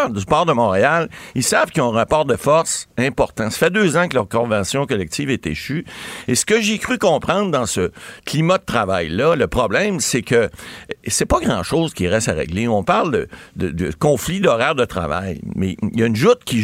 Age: 60-79